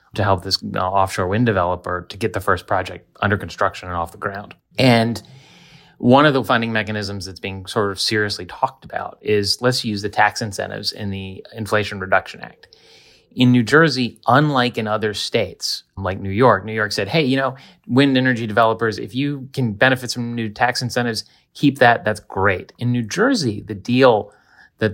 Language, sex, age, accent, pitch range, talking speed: English, male, 30-49, American, 100-125 Hz, 190 wpm